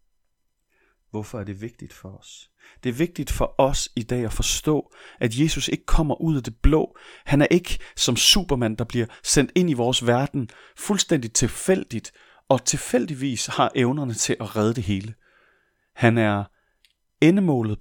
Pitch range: 110-145 Hz